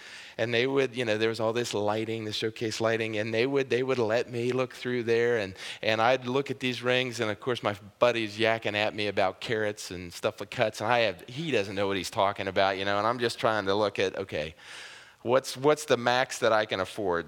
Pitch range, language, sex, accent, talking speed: 105-140 Hz, English, male, American, 255 wpm